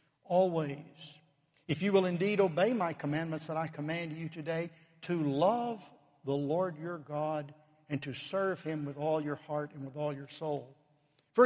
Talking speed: 175 wpm